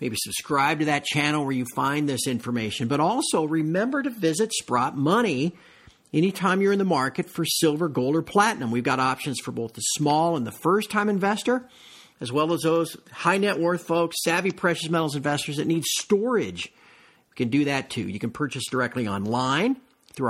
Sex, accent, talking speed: male, American, 190 wpm